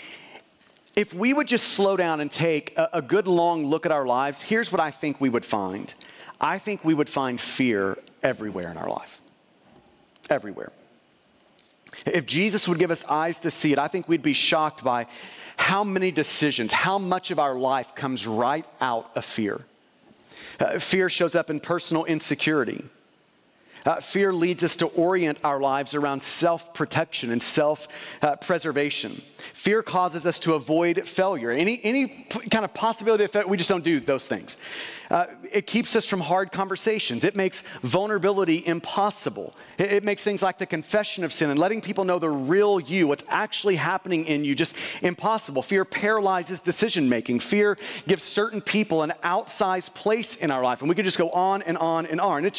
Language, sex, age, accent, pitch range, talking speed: Ukrainian, male, 40-59, American, 150-200 Hz, 180 wpm